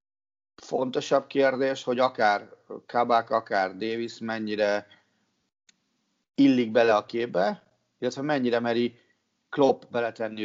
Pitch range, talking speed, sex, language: 110-135 Hz, 100 wpm, male, Hungarian